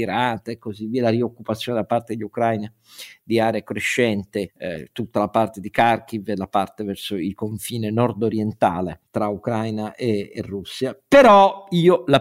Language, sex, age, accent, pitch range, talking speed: Italian, male, 50-69, native, 105-125 Hz, 165 wpm